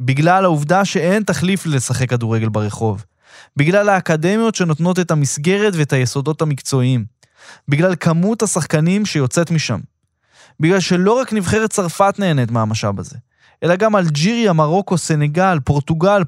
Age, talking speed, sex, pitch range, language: 20-39, 125 wpm, male, 135-190 Hz, Hebrew